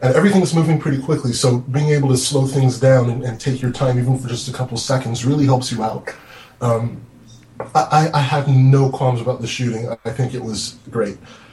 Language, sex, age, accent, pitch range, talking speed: English, male, 20-39, American, 120-135 Hz, 215 wpm